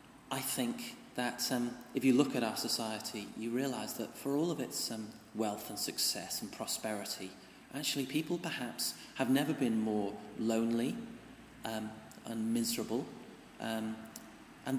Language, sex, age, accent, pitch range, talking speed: English, male, 30-49, British, 110-135 Hz, 145 wpm